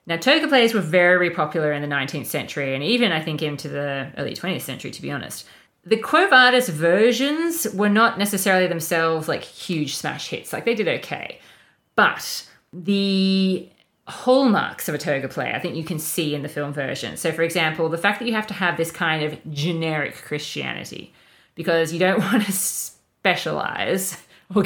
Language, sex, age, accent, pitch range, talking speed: English, female, 30-49, Australian, 150-190 Hz, 185 wpm